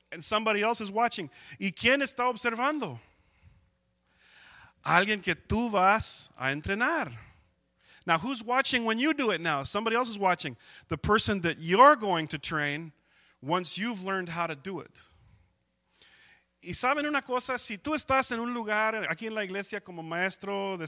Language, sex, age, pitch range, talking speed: English, male, 40-59, 165-215 Hz, 165 wpm